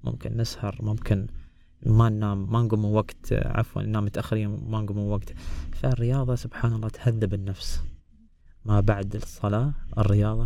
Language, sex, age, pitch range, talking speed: Arabic, male, 20-39, 95-120 Hz, 145 wpm